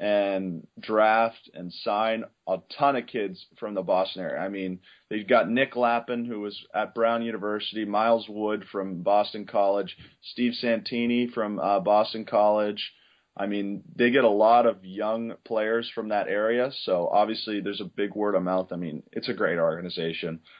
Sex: male